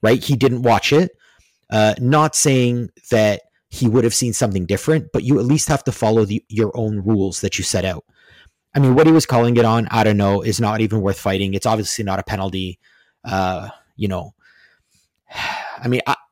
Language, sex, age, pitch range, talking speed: English, male, 30-49, 100-125 Hz, 205 wpm